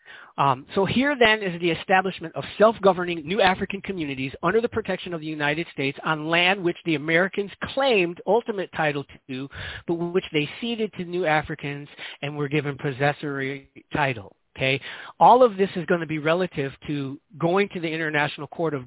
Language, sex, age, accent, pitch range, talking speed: English, male, 40-59, American, 145-190 Hz, 180 wpm